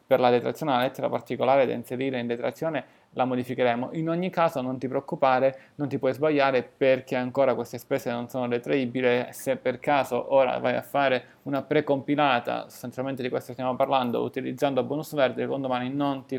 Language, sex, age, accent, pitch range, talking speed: Italian, male, 20-39, native, 125-150 Hz, 185 wpm